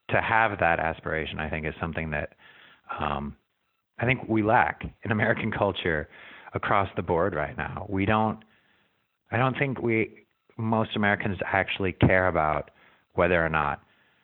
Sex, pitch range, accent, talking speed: male, 80-105 Hz, American, 150 wpm